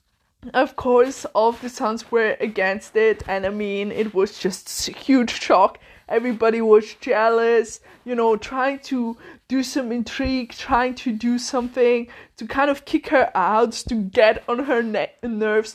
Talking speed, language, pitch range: 165 wpm, English, 220-260 Hz